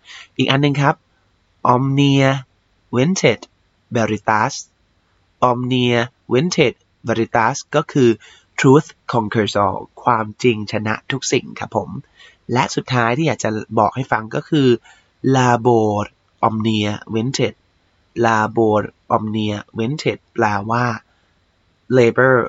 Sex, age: male, 20-39